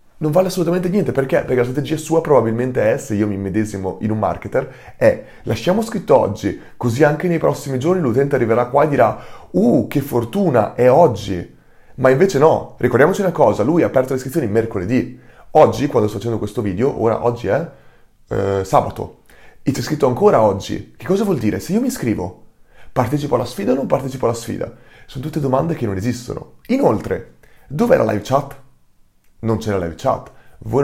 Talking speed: 190 wpm